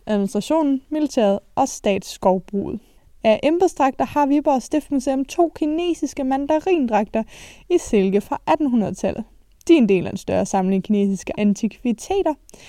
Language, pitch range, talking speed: Danish, 220-285 Hz, 125 wpm